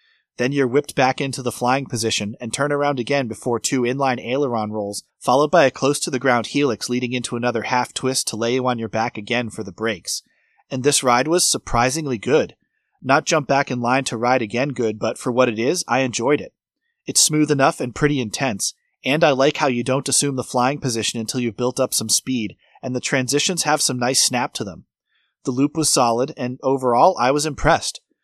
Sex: male